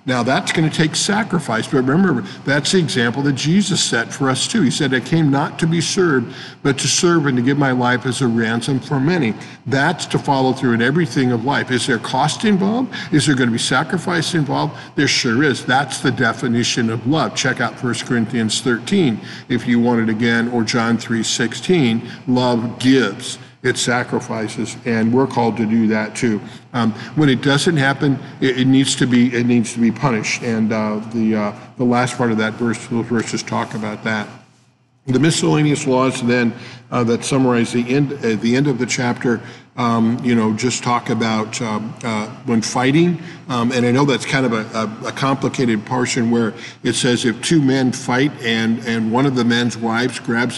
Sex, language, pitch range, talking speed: male, English, 115-140 Hz, 200 wpm